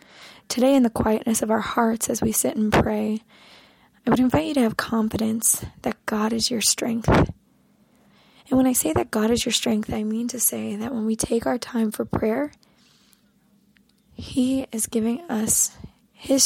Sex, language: female, English